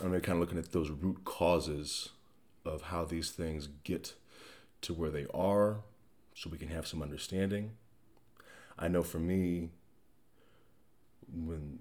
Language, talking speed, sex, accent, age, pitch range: English, 140 wpm, male, American, 30-49, 85-100 Hz